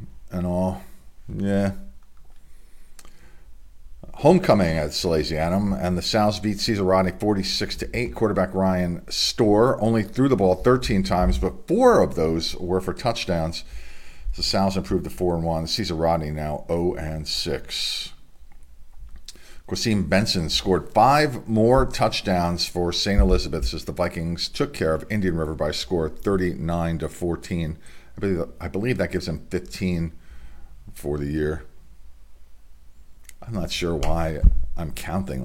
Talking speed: 125 wpm